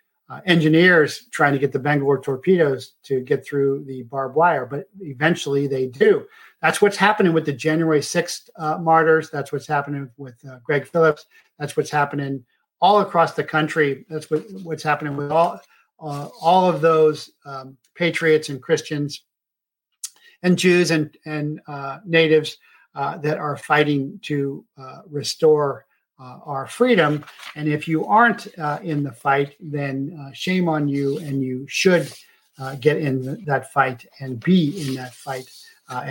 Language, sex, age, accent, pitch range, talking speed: English, male, 50-69, American, 140-165 Hz, 160 wpm